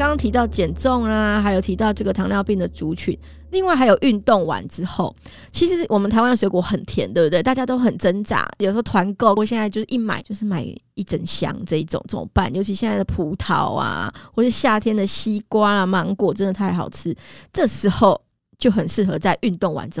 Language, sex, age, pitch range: Chinese, female, 20-39, 175-220 Hz